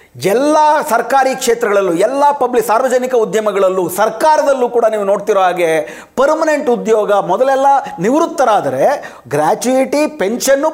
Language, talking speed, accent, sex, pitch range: Kannada, 100 wpm, native, male, 205-270 Hz